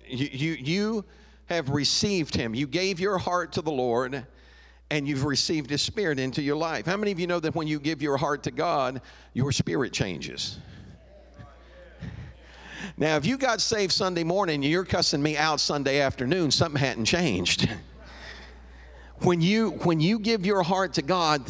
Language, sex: English, male